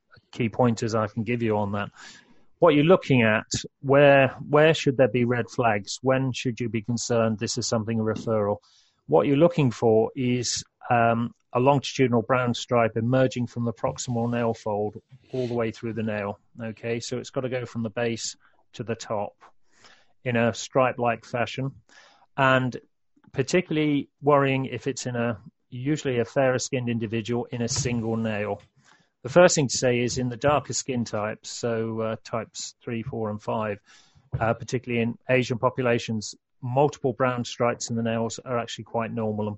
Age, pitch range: 30-49, 115-130 Hz